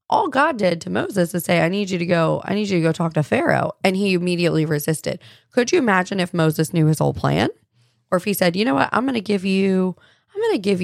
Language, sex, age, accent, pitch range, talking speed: English, female, 20-39, American, 145-190 Hz, 260 wpm